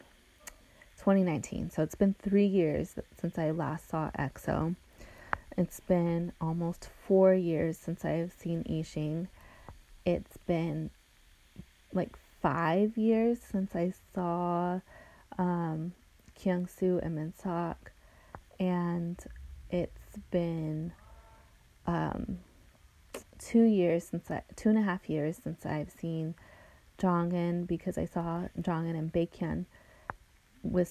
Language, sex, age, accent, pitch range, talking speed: English, female, 20-39, American, 160-190 Hz, 110 wpm